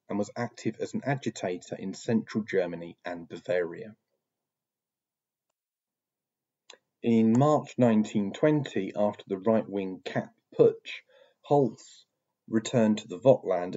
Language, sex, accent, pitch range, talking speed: French, male, British, 95-120 Hz, 110 wpm